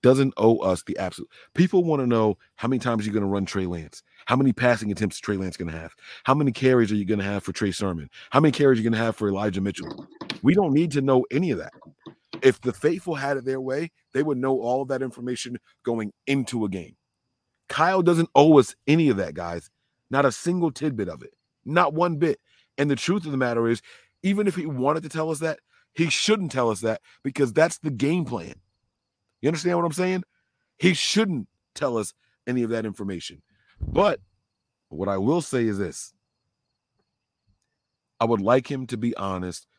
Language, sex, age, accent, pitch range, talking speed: English, male, 30-49, American, 100-140 Hz, 215 wpm